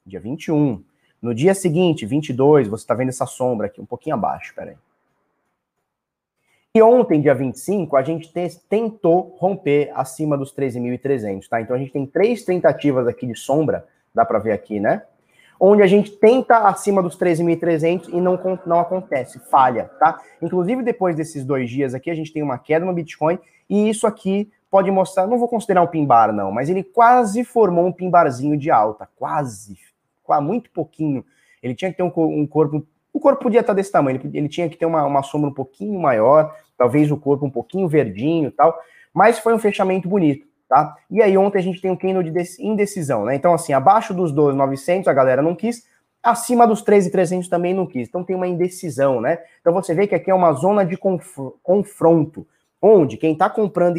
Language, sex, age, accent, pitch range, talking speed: Portuguese, male, 20-39, Brazilian, 145-195 Hz, 195 wpm